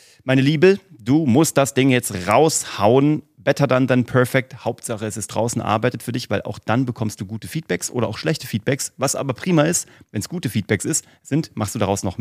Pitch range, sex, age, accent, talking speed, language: 105-140 Hz, male, 30-49, German, 215 wpm, German